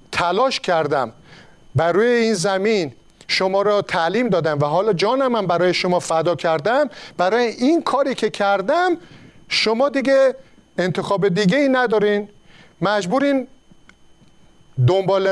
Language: Persian